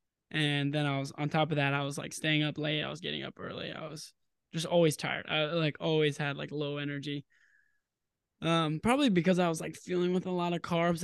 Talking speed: 235 wpm